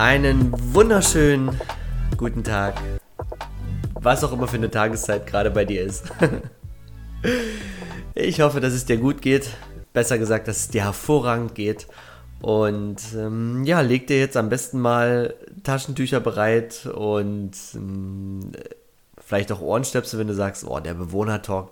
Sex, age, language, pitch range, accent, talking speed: male, 30-49, German, 110-135 Hz, German, 140 wpm